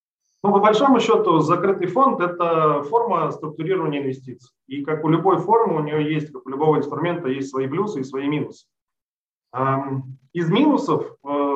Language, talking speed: Russian, 155 wpm